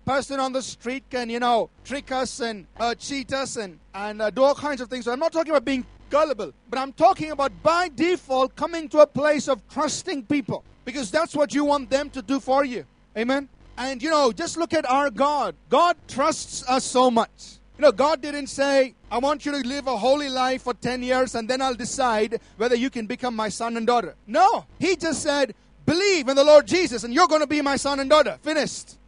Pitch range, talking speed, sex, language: 260-315 Hz, 230 wpm, male, English